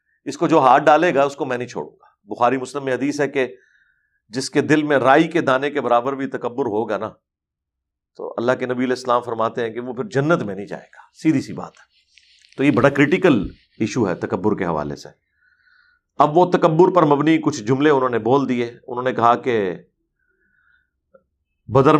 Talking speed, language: 210 wpm, Urdu